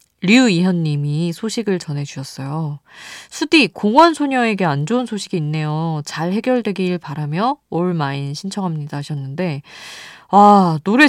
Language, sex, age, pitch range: Korean, female, 20-39, 155-215 Hz